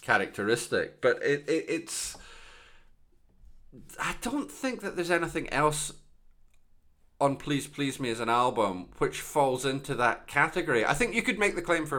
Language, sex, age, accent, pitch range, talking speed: English, male, 30-49, British, 105-150 Hz, 160 wpm